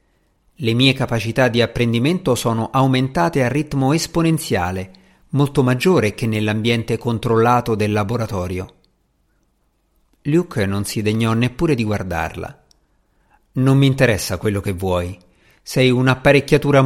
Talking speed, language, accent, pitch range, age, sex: 115 wpm, Italian, native, 105-150 Hz, 50-69, male